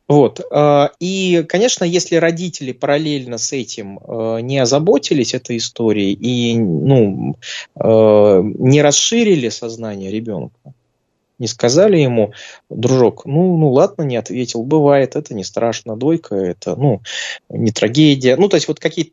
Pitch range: 115-165 Hz